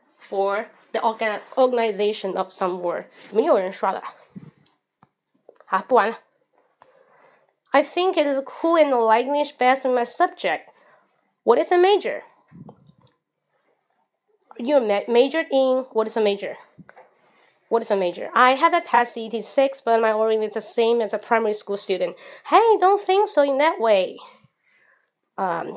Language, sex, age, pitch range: Chinese, female, 20-39, 210-325 Hz